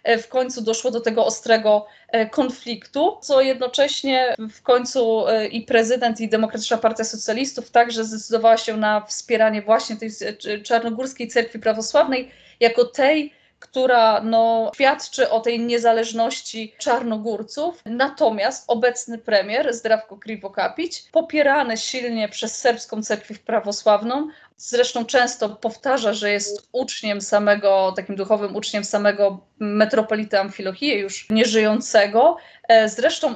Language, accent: Polish, native